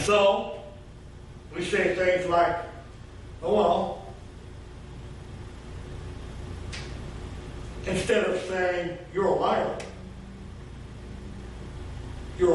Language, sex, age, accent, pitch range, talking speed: English, male, 60-79, American, 165-230 Hz, 70 wpm